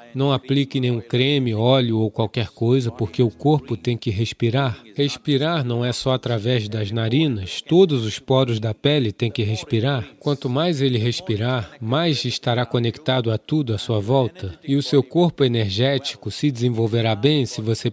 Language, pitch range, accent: English, 115-145 Hz, Brazilian